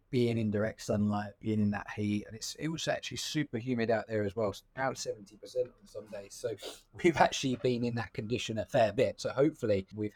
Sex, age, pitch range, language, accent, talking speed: male, 20-39, 95-110 Hz, English, British, 225 wpm